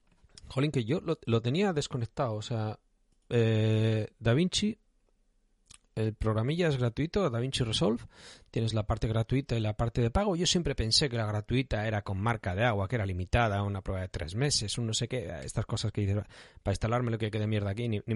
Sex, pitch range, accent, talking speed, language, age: male, 110-145 Hz, Spanish, 210 wpm, Spanish, 40-59